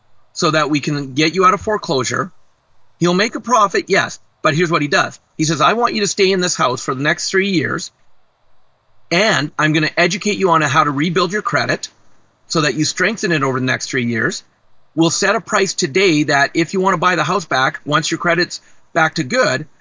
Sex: male